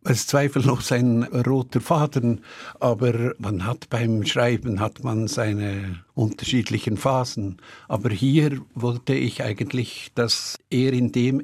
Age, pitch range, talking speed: 60-79, 115-130 Hz, 125 wpm